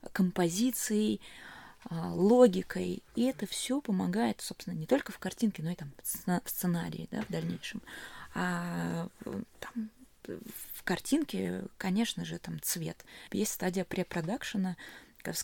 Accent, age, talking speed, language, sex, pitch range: native, 20-39, 120 wpm, Russian, female, 170-215 Hz